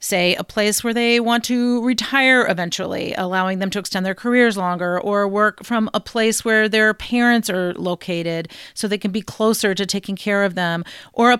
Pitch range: 185-225 Hz